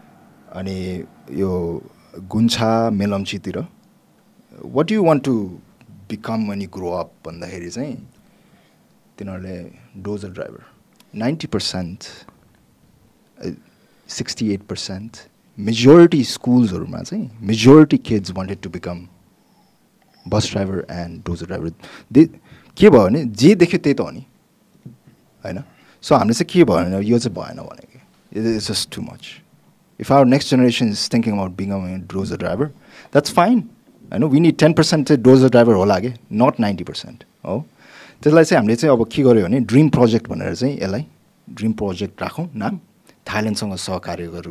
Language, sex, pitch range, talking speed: English, male, 95-135 Hz, 120 wpm